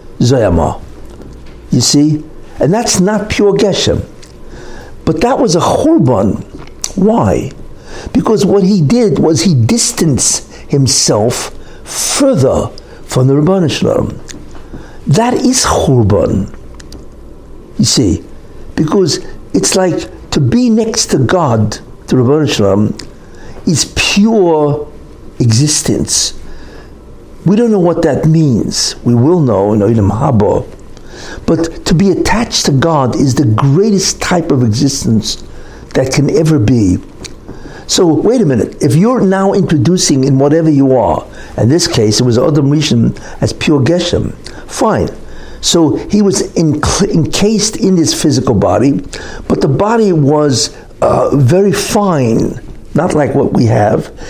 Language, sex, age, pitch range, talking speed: English, male, 60-79, 130-195 Hz, 125 wpm